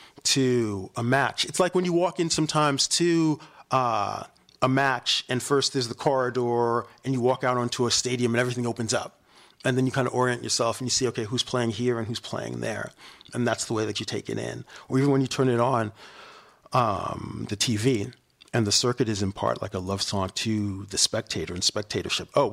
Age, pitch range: 40-59, 105-130 Hz